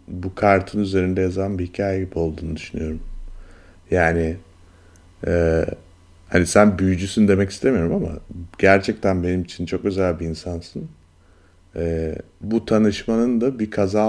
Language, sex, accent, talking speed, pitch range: Turkish, male, native, 130 wpm, 85-100 Hz